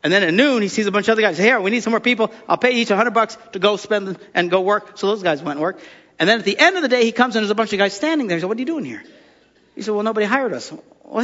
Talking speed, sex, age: 360 wpm, male, 50-69